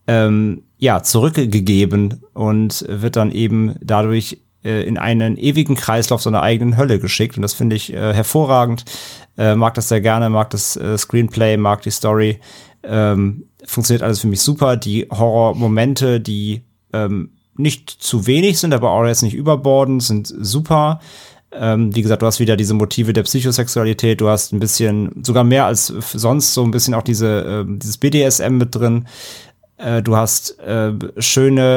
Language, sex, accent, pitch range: German, male, German, 110-125 Hz